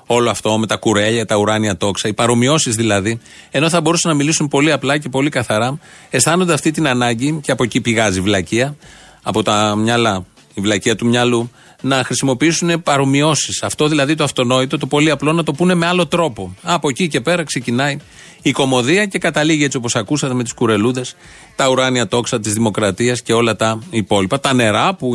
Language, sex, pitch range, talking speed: Greek, male, 115-160 Hz, 195 wpm